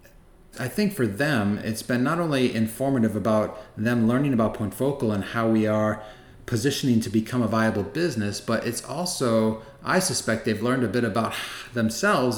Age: 30-49